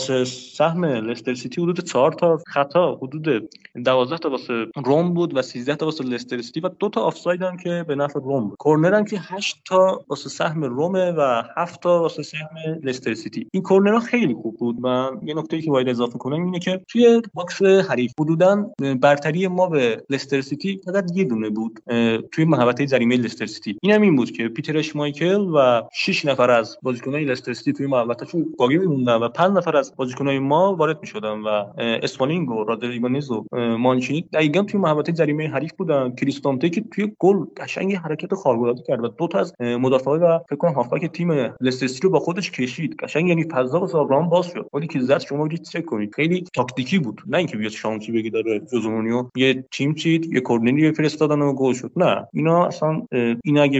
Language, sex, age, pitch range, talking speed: Persian, male, 30-49, 125-170 Hz, 165 wpm